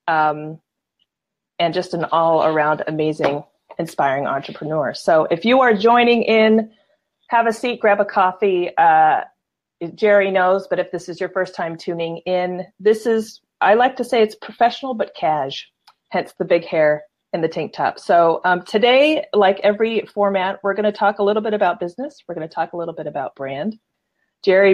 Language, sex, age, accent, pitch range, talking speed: English, female, 30-49, American, 165-215 Hz, 180 wpm